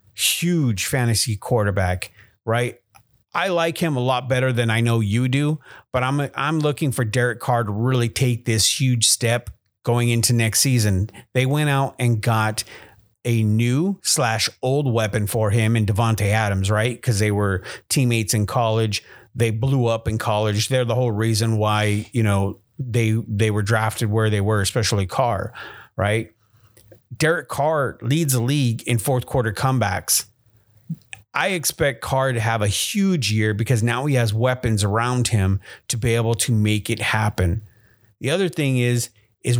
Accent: American